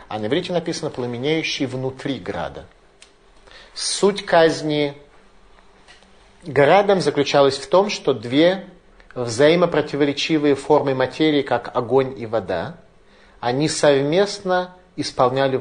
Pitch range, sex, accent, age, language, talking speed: 130-165 Hz, male, native, 40-59, Russian, 95 wpm